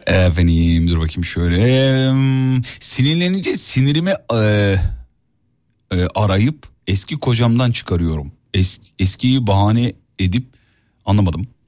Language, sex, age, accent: Turkish, male, 40-59, native